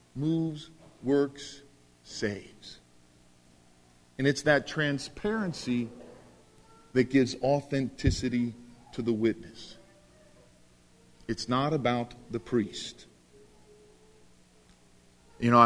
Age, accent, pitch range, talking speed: 50-69, American, 90-145 Hz, 75 wpm